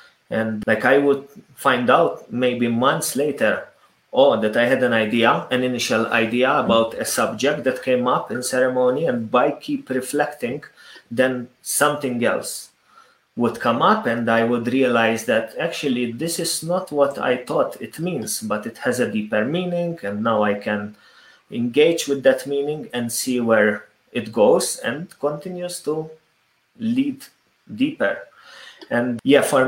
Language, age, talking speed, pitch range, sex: English, 30-49, 155 wpm, 115-140 Hz, male